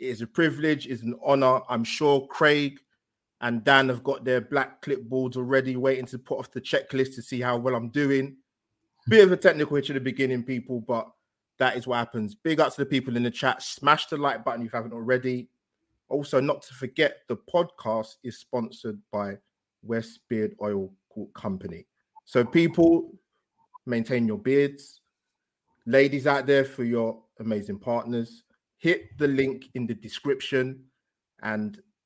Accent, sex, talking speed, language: British, male, 175 wpm, English